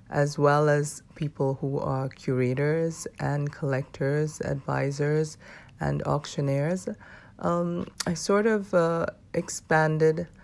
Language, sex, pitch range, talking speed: English, female, 130-150 Hz, 105 wpm